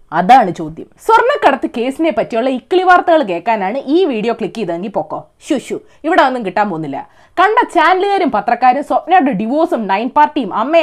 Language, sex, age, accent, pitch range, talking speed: Malayalam, female, 20-39, native, 235-360 Hz, 140 wpm